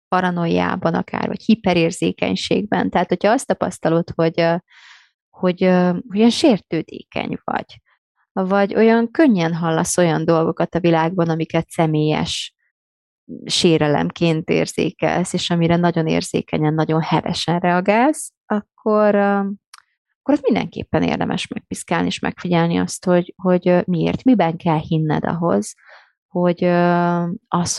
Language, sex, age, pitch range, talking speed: Hungarian, female, 30-49, 160-195 Hz, 110 wpm